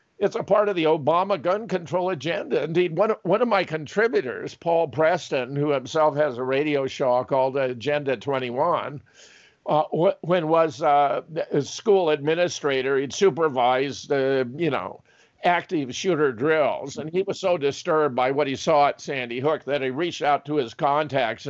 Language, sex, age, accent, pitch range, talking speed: English, male, 50-69, American, 135-165 Hz, 170 wpm